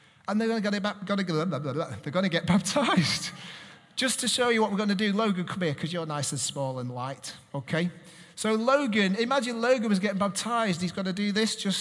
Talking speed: 200 wpm